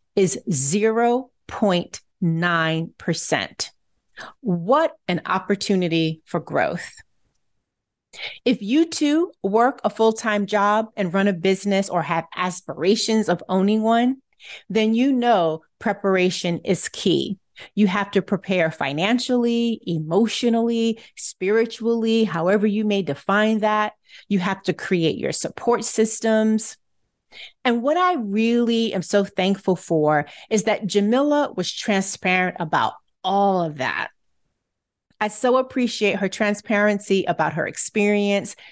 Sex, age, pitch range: female, 40-59, 185-240 Hz